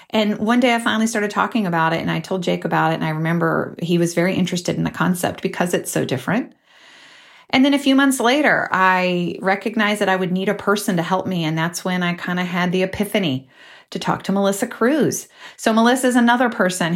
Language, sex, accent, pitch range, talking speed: English, female, American, 165-200 Hz, 230 wpm